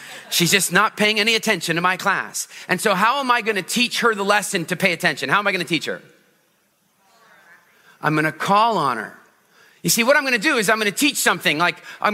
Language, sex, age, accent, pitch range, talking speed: English, male, 40-59, American, 170-215 Hz, 250 wpm